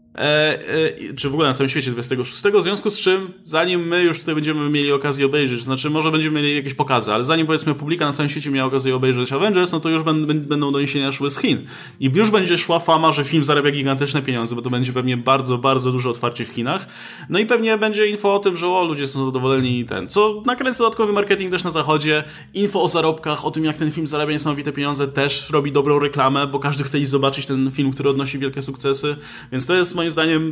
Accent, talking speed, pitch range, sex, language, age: native, 235 wpm, 130-160 Hz, male, Polish, 20-39